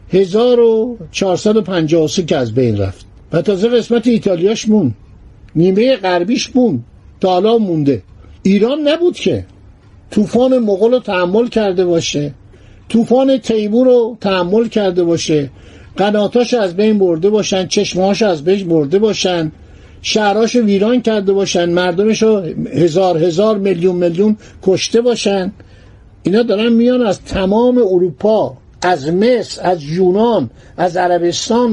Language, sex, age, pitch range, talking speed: Persian, male, 50-69, 165-225 Hz, 120 wpm